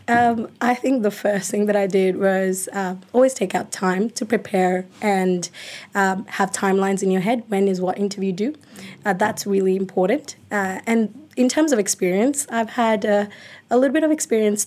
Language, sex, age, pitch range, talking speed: English, female, 20-39, 190-225 Hz, 195 wpm